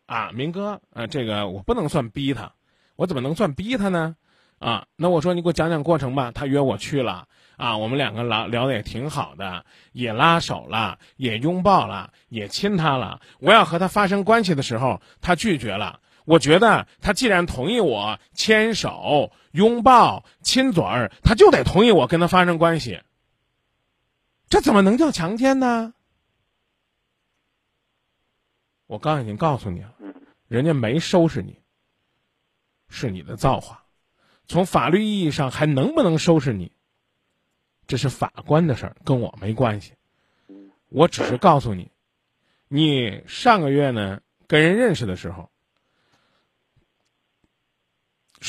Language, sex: Chinese, male